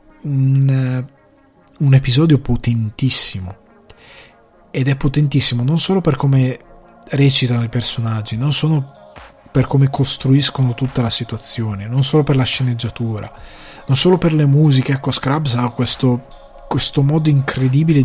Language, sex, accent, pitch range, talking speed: Italian, male, native, 110-135 Hz, 130 wpm